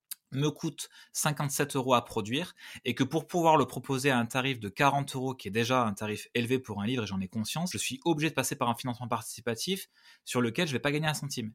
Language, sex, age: French, male, 20-39